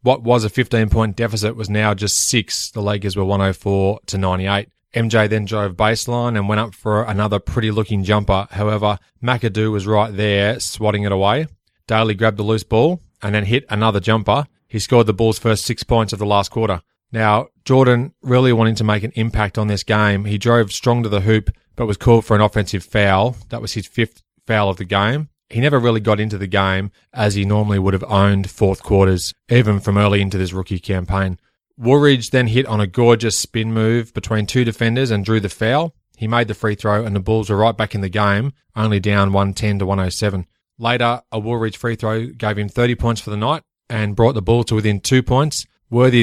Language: English